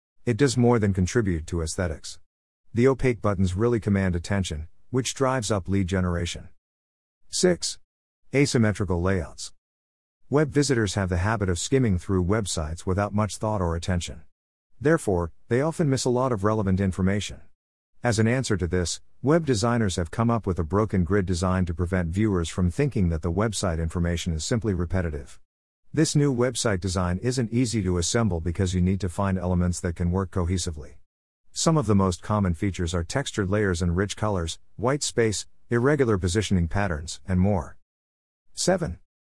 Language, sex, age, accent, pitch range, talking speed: English, male, 50-69, American, 85-110 Hz, 165 wpm